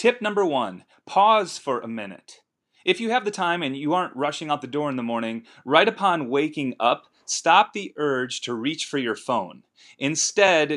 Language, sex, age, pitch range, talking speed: English, male, 30-49, 135-175 Hz, 195 wpm